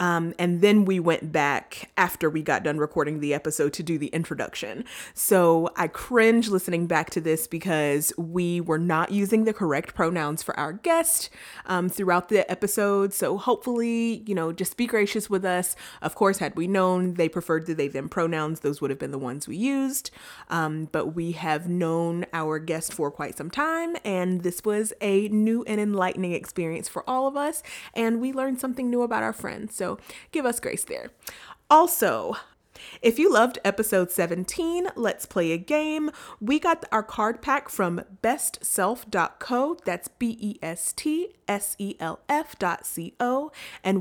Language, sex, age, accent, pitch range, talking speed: English, female, 30-49, American, 170-235 Hz, 170 wpm